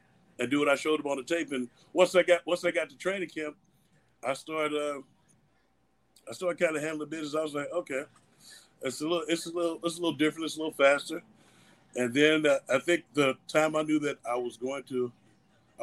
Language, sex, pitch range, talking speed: English, male, 130-155 Hz, 230 wpm